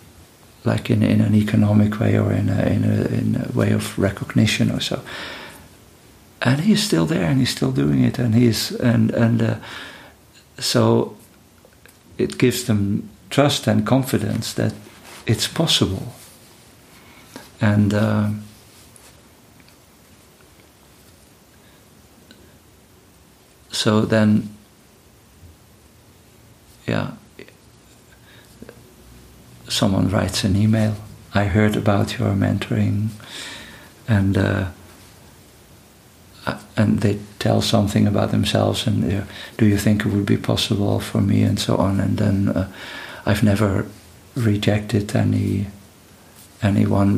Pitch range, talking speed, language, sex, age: 100-115 Hz, 110 wpm, German, male, 50-69